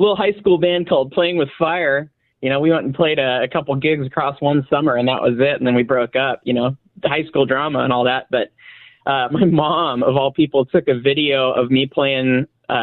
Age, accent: 20-39, American